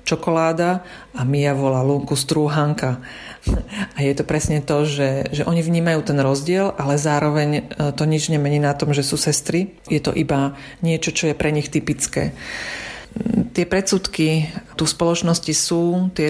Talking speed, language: 160 wpm, Slovak